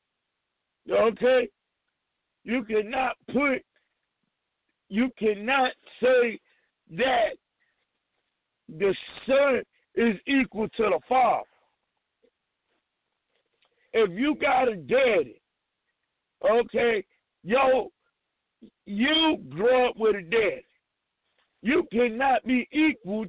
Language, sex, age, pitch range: English, male, 60-79, 235-370 Hz